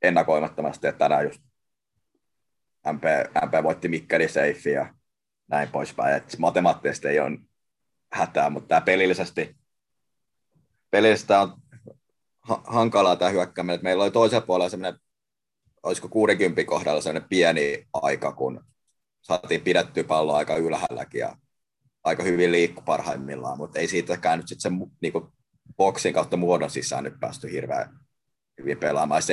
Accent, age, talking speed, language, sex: native, 20-39, 125 wpm, Finnish, male